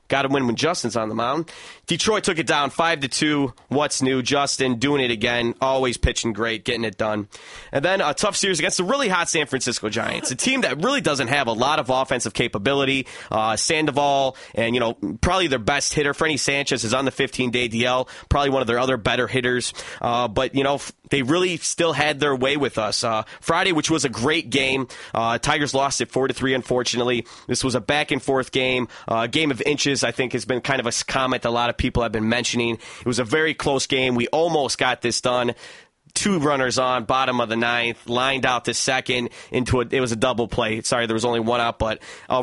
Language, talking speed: English, 220 wpm